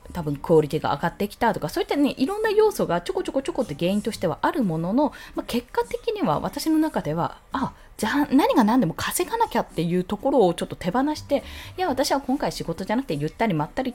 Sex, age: female, 20-39